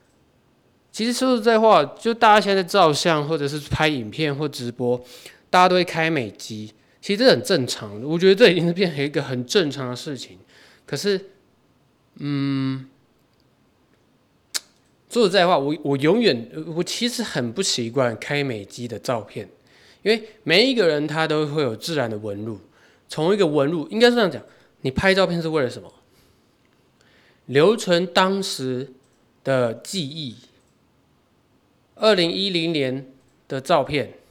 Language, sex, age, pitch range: Chinese, male, 20-39, 125-170 Hz